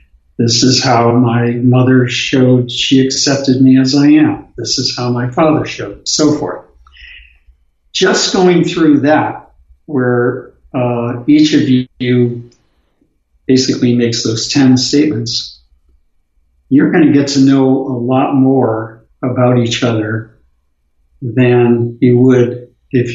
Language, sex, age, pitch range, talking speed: English, male, 60-79, 115-130 Hz, 130 wpm